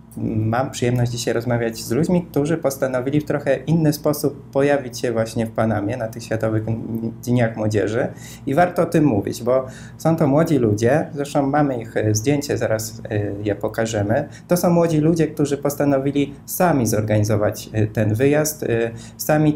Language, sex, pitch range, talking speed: Polish, male, 110-135 Hz, 155 wpm